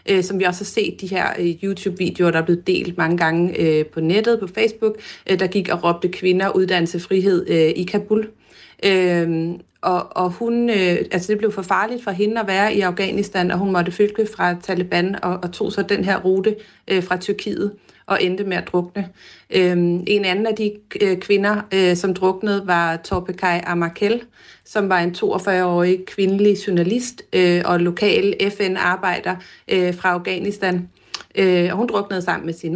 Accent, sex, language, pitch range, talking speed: native, female, Danish, 175-200 Hz, 160 wpm